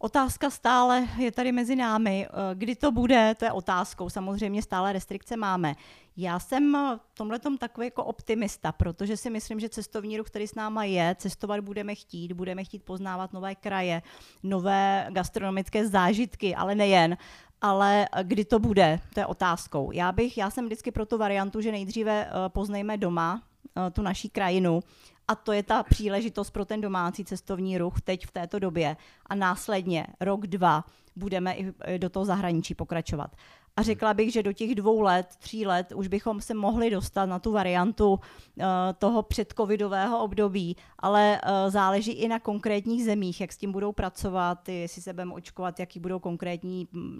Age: 30-49